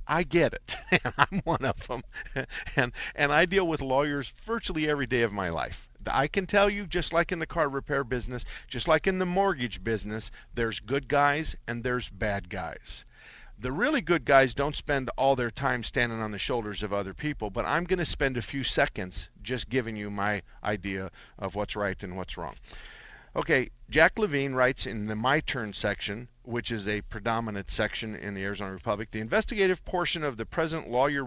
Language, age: English, 50-69